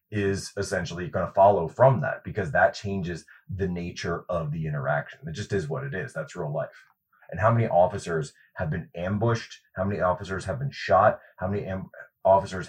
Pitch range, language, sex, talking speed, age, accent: 90-120 Hz, English, male, 185 wpm, 30-49, American